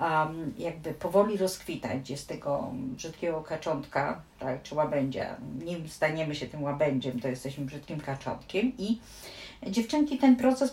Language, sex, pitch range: Polish, female, 155-220 Hz